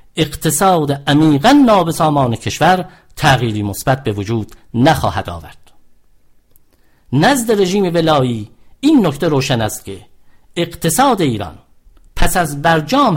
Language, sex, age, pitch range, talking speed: English, male, 50-69, 120-165 Hz, 105 wpm